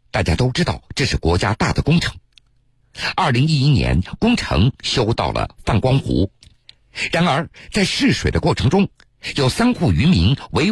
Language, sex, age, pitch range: Chinese, male, 50-69, 100-130 Hz